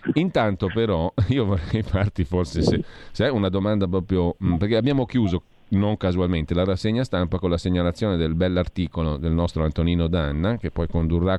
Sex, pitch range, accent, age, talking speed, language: male, 85-110 Hz, native, 40-59, 170 wpm, Italian